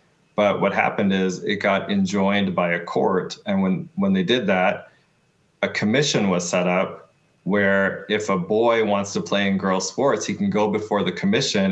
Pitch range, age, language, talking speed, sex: 95-115 Hz, 20-39, English, 190 wpm, male